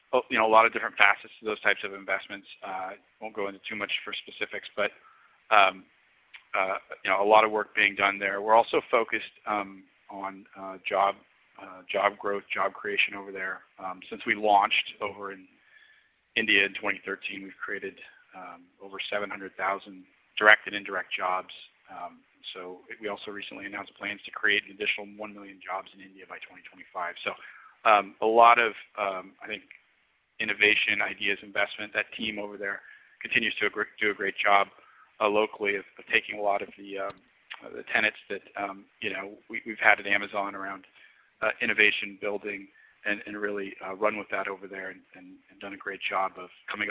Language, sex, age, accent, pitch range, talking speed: English, male, 40-59, American, 95-105 Hz, 185 wpm